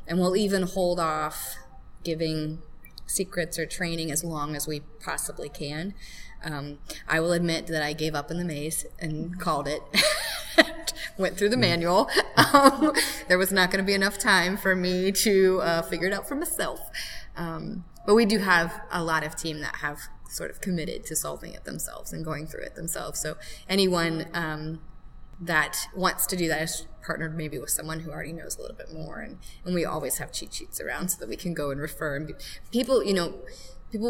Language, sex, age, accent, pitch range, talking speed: English, female, 20-39, American, 155-190 Hz, 200 wpm